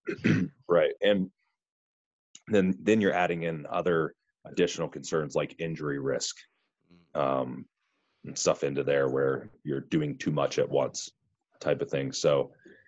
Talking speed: 135 wpm